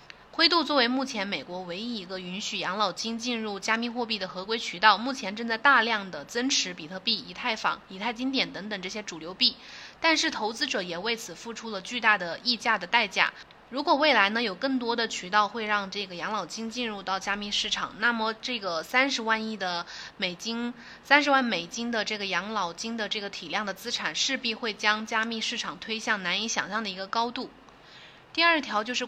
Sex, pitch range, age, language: female, 195-245 Hz, 20-39, Chinese